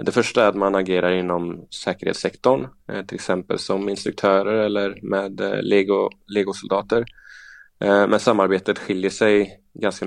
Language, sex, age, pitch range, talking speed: Swedish, male, 20-39, 95-100 Hz, 120 wpm